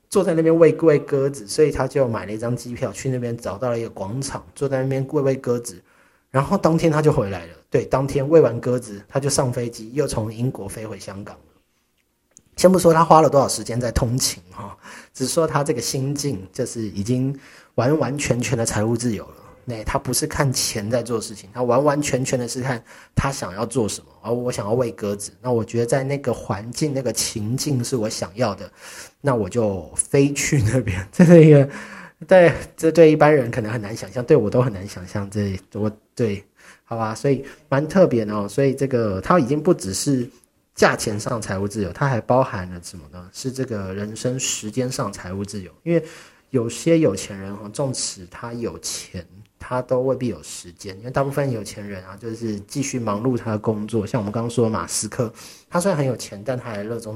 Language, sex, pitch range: Chinese, male, 105-135 Hz